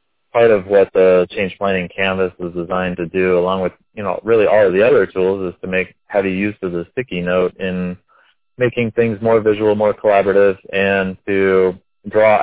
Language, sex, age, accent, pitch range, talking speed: English, male, 20-39, American, 90-100 Hz, 195 wpm